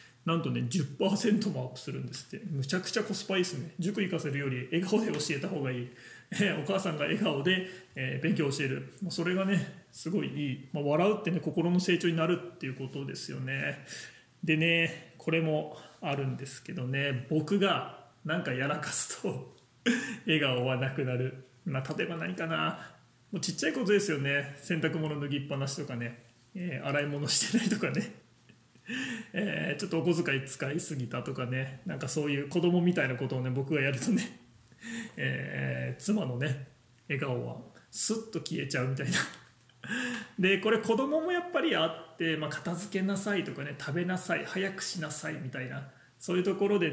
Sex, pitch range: male, 135-185 Hz